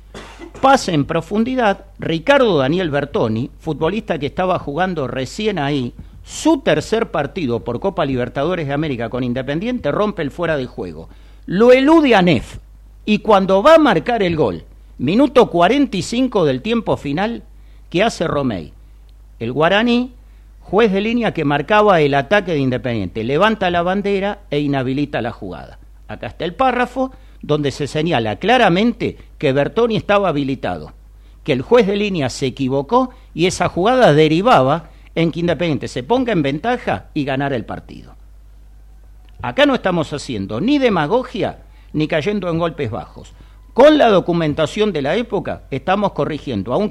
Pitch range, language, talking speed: 135-210 Hz, Spanish, 150 wpm